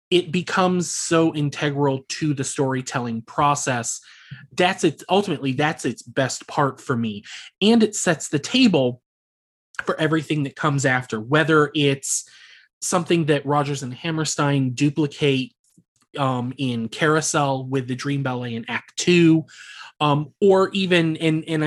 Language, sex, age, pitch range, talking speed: English, male, 20-39, 125-160 Hz, 140 wpm